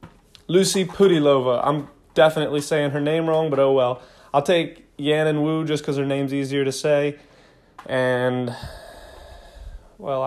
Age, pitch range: 20-39, 130-150 Hz